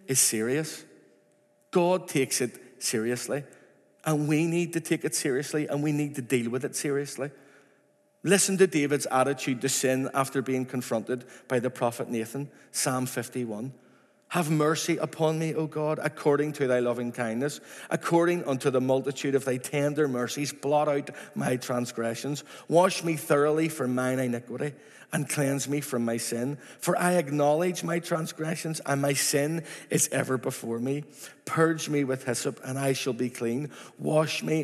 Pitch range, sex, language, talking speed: 125-155 Hz, male, English, 165 wpm